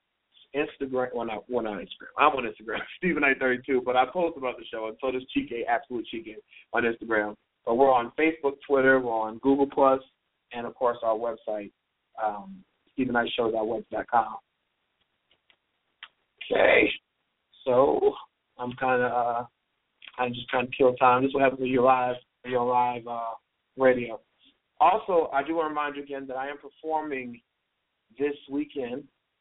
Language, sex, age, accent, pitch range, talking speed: English, male, 30-49, American, 120-140 Hz, 170 wpm